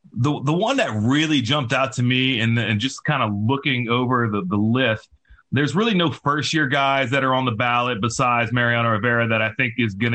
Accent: American